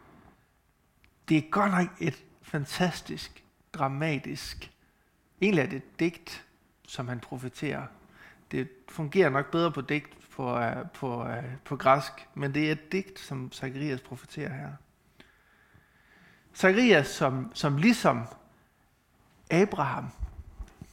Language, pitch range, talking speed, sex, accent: Danish, 135-175 Hz, 110 wpm, male, native